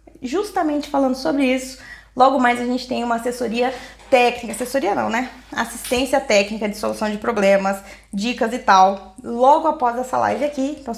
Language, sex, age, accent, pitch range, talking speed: Portuguese, female, 20-39, Brazilian, 230-310 Hz, 165 wpm